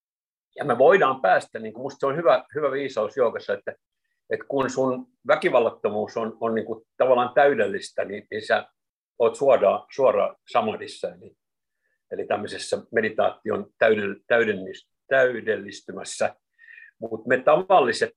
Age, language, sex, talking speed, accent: 50-69, Finnish, male, 130 wpm, native